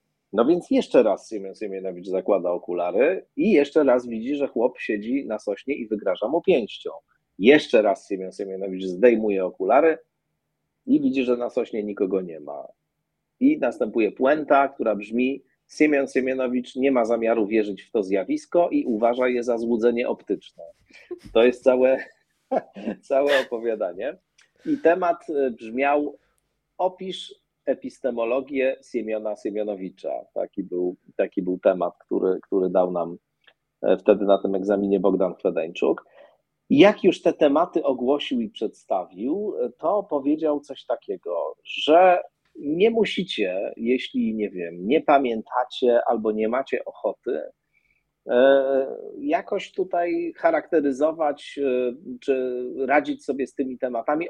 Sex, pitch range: male, 115-170 Hz